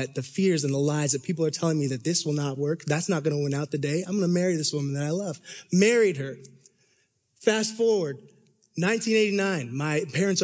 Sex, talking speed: male, 225 wpm